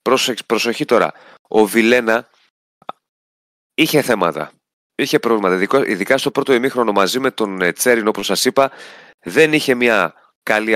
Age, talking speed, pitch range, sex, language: 30-49, 130 wpm, 100-135 Hz, male, Greek